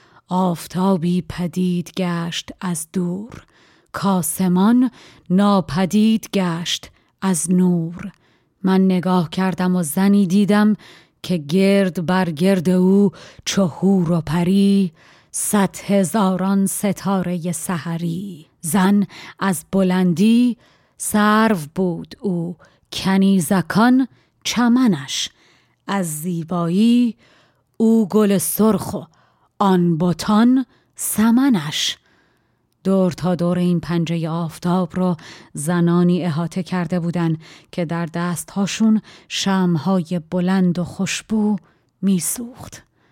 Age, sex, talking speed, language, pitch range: 30-49, female, 90 wpm, Persian, 170-195 Hz